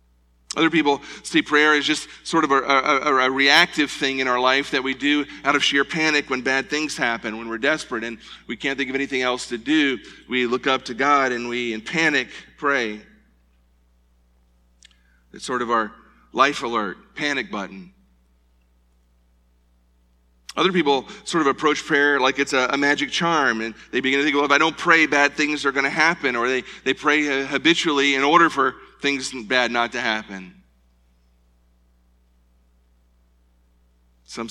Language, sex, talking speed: English, male, 170 wpm